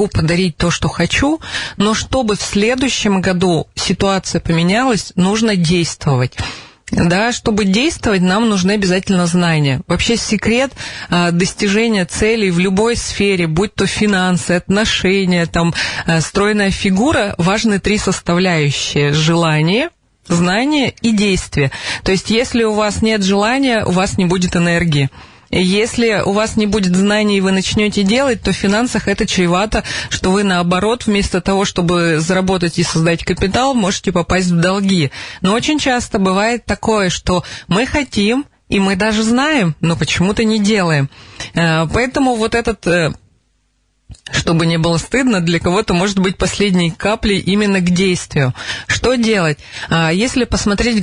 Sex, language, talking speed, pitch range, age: female, Russian, 140 wpm, 175-215 Hz, 30-49